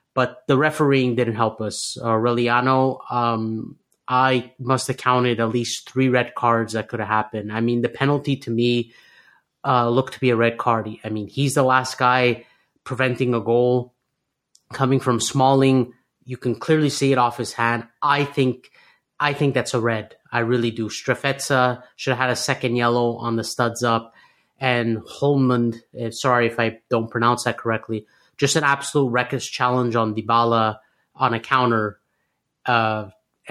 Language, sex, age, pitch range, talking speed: English, male, 30-49, 115-130 Hz, 175 wpm